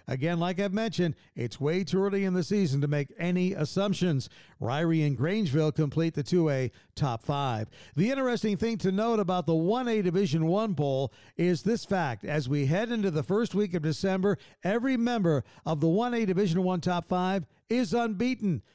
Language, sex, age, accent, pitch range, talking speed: English, male, 50-69, American, 145-195 Hz, 180 wpm